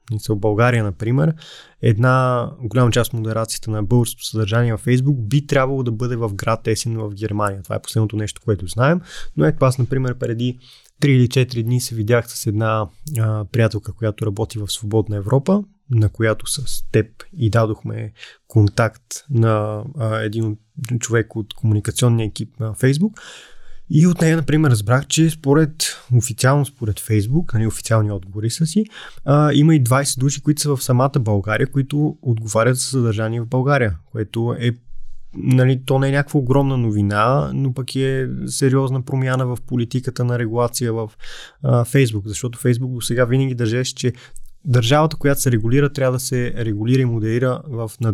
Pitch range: 110-135 Hz